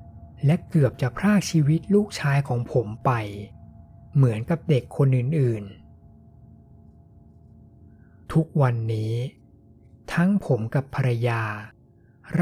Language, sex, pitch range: Thai, male, 110-150 Hz